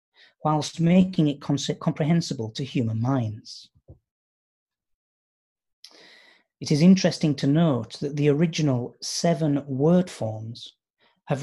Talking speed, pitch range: 100 wpm, 120-160 Hz